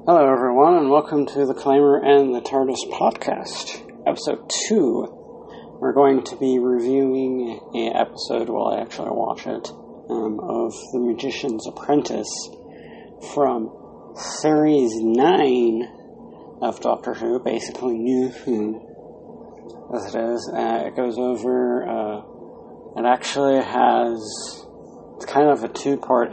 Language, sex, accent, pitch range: English, male, American, 115-140 Hz